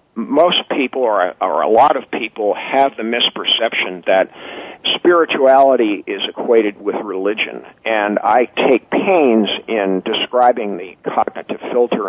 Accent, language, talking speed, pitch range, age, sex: American, English, 125 wpm, 115-140 Hz, 50-69, male